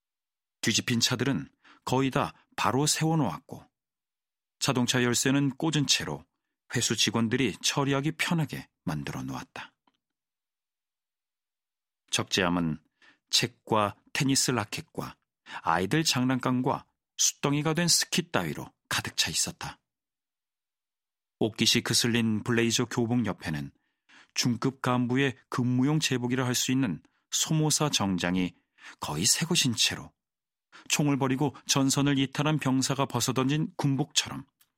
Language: Korean